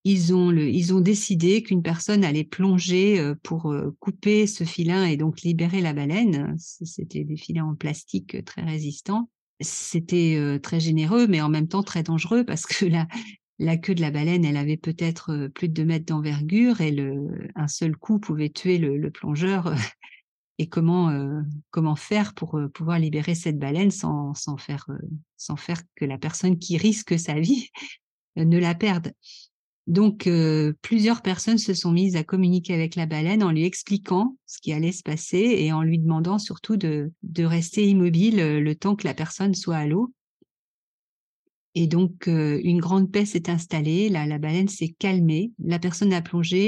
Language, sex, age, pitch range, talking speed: French, female, 50-69, 155-190 Hz, 180 wpm